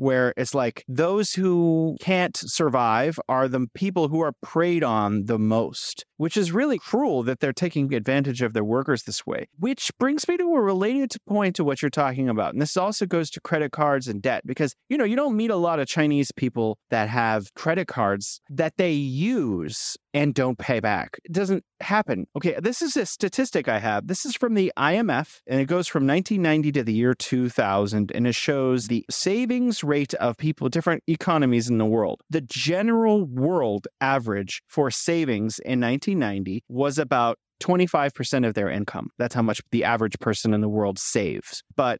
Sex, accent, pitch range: male, American, 120-175 Hz